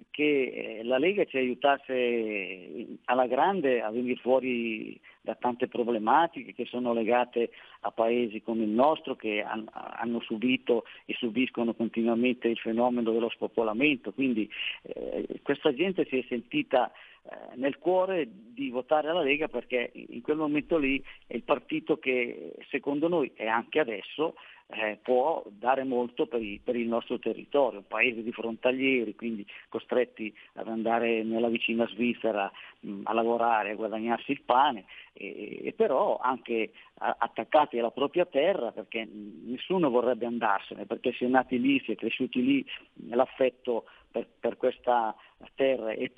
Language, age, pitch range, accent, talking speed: Italian, 50-69, 115-130 Hz, native, 140 wpm